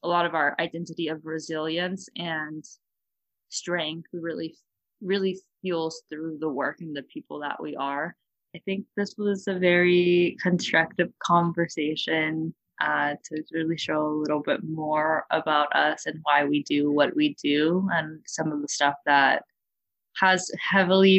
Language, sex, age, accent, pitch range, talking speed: English, female, 20-39, American, 145-175 Hz, 155 wpm